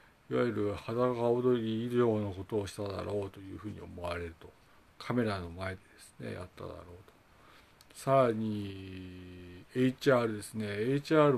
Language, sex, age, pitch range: Japanese, male, 40-59, 100-130 Hz